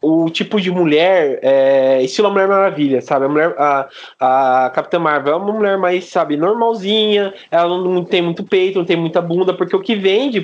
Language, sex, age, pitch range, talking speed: Portuguese, male, 20-39, 150-210 Hz, 200 wpm